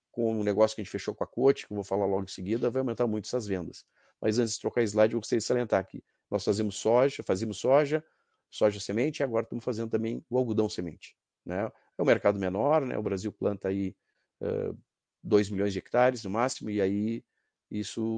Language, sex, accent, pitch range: Portuguese, male, Brazilian, 100-115 Hz